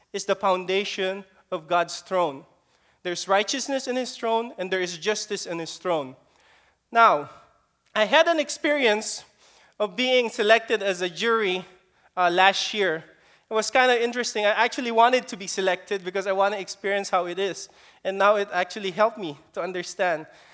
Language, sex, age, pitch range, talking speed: English, male, 20-39, 190-235 Hz, 170 wpm